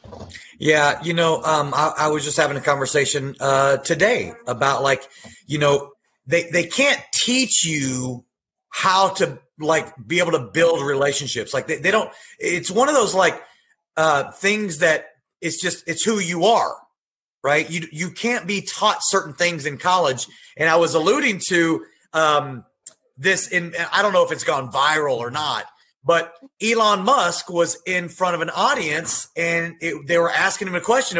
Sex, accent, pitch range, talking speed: male, American, 160-245 Hz, 175 wpm